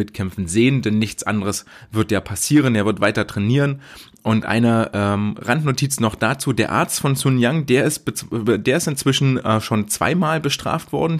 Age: 30-49